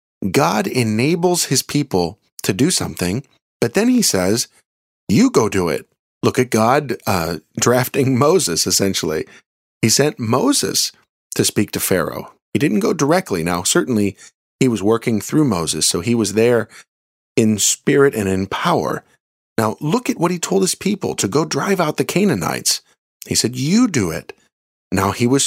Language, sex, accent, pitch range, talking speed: English, male, American, 100-150 Hz, 165 wpm